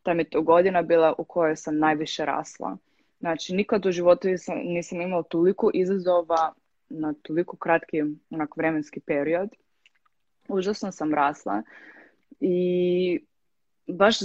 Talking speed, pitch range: 120 wpm, 150-180 Hz